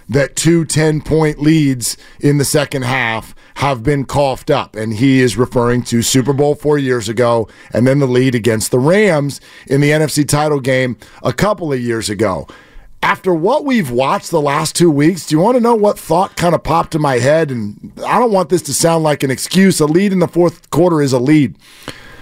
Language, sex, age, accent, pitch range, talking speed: English, male, 40-59, American, 145-225 Hz, 215 wpm